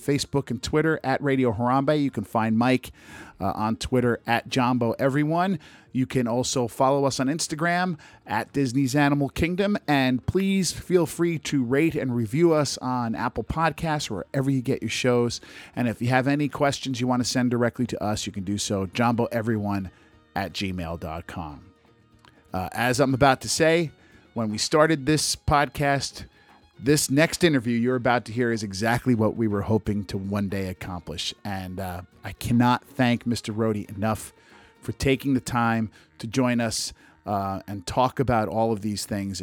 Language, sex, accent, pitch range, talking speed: English, male, American, 105-140 Hz, 180 wpm